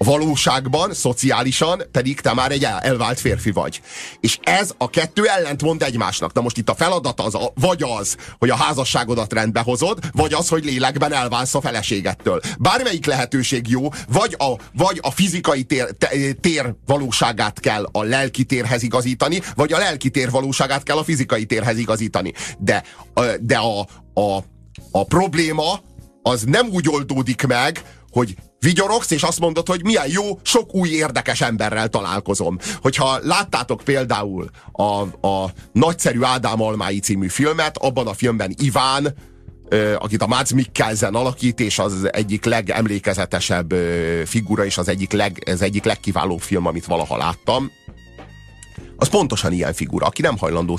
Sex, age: male, 30-49